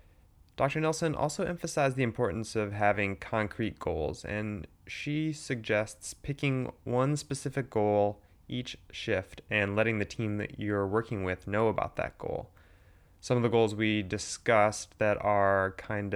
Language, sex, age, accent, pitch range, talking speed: English, male, 20-39, American, 95-110 Hz, 150 wpm